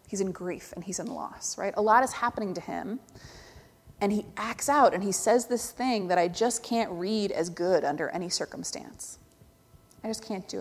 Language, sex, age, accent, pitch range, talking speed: English, female, 30-49, American, 190-250 Hz, 210 wpm